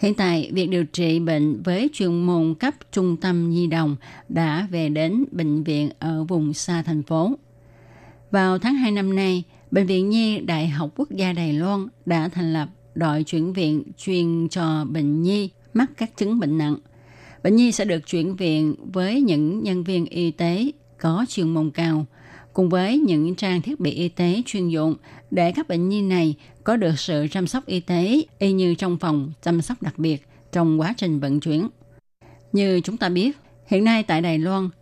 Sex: female